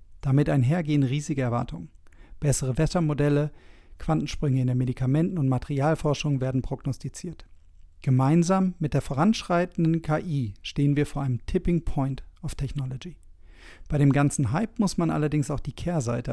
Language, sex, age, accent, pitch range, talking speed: German, male, 40-59, German, 135-180 Hz, 135 wpm